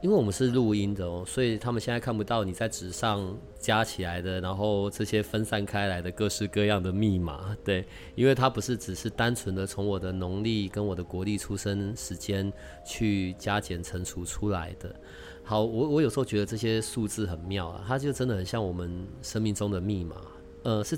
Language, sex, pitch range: Chinese, male, 90-110 Hz